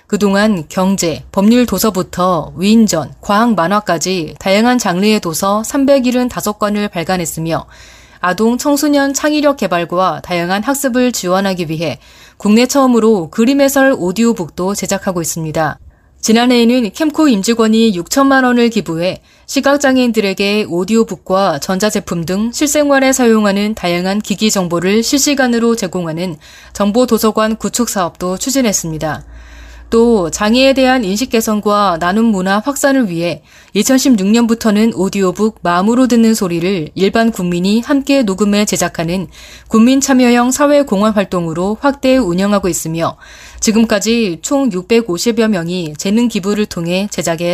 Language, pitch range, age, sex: Korean, 180-240 Hz, 20-39, female